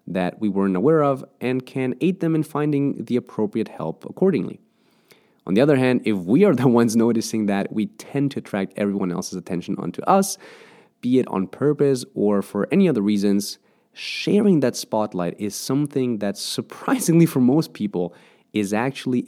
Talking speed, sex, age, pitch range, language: 175 wpm, male, 30-49, 100-135 Hz, English